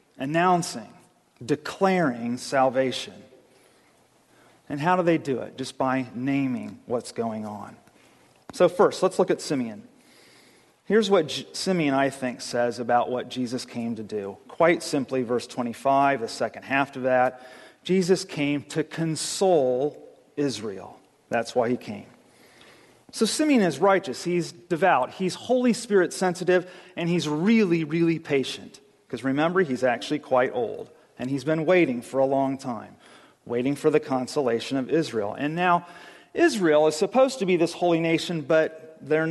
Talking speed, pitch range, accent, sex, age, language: 150 wpm, 125-175 Hz, American, male, 40-59, English